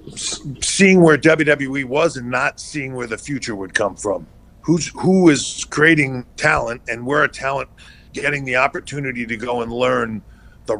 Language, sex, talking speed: English, male, 170 wpm